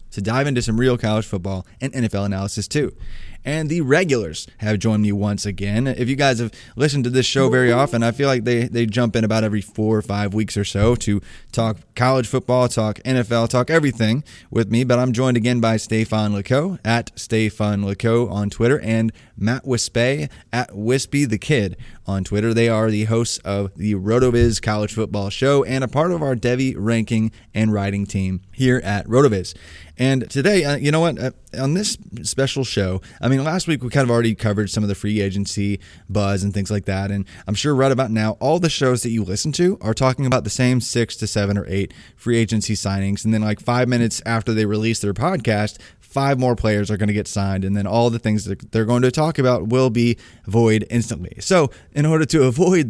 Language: English